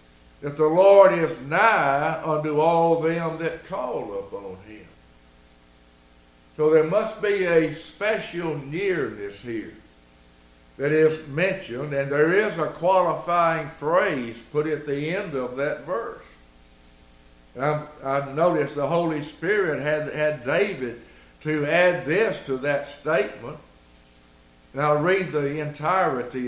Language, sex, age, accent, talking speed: English, male, 60-79, American, 120 wpm